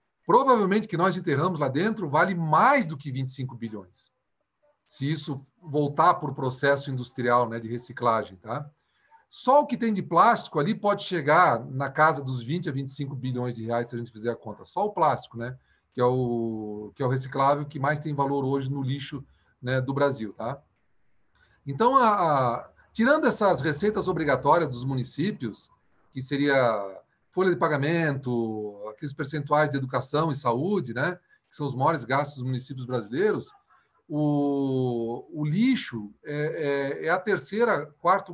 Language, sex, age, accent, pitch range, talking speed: Portuguese, male, 40-59, Brazilian, 130-180 Hz, 165 wpm